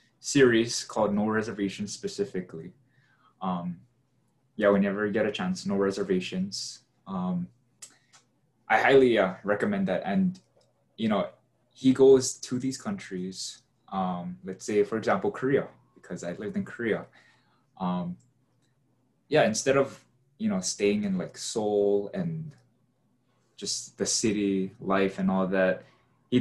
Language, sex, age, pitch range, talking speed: English, male, 20-39, 105-135 Hz, 130 wpm